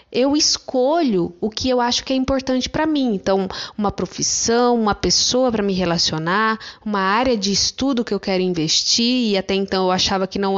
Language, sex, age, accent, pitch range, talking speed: Portuguese, female, 20-39, Brazilian, 195-265 Hz, 195 wpm